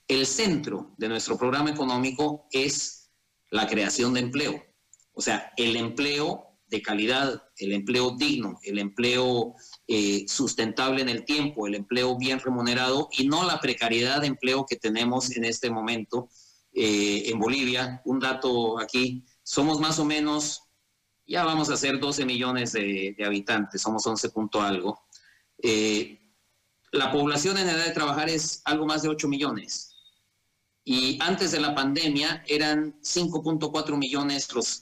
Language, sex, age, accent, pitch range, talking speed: Spanish, male, 40-59, Mexican, 115-150 Hz, 150 wpm